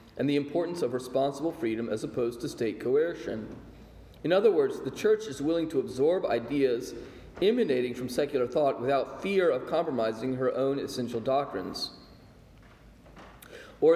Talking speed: 145 wpm